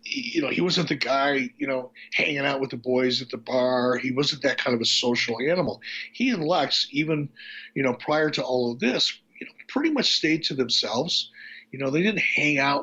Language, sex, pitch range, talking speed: English, male, 125-155 Hz, 225 wpm